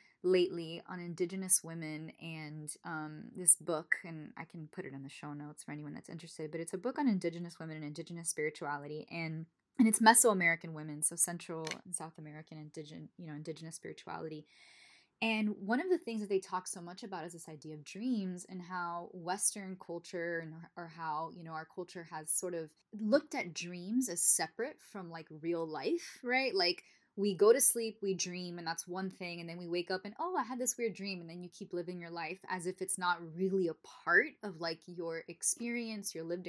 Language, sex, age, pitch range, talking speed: English, female, 10-29, 165-205 Hz, 210 wpm